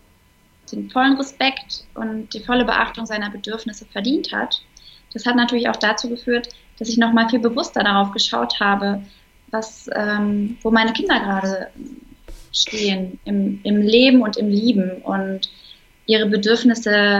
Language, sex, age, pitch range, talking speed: German, female, 20-39, 200-245 Hz, 145 wpm